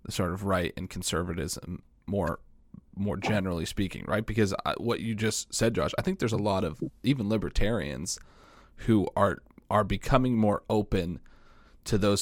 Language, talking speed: English, 165 wpm